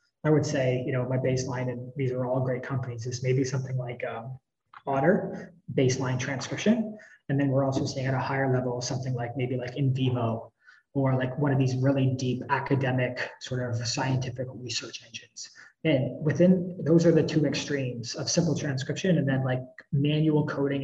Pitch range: 130-150 Hz